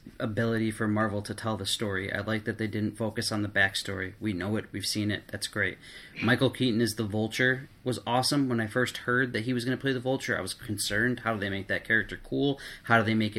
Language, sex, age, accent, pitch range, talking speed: English, male, 30-49, American, 105-125 Hz, 255 wpm